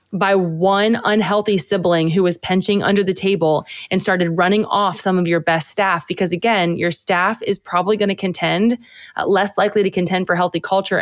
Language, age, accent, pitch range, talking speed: English, 20-39, American, 180-205 Hz, 190 wpm